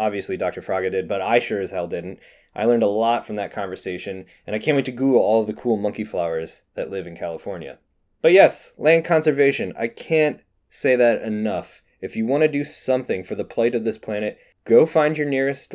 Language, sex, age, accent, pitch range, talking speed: English, male, 20-39, American, 110-150 Hz, 220 wpm